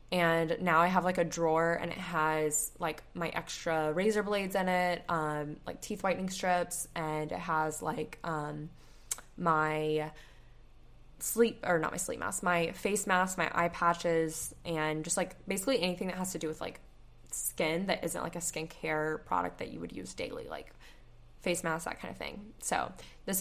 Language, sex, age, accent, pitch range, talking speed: English, female, 10-29, American, 155-185 Hz, 185 wpm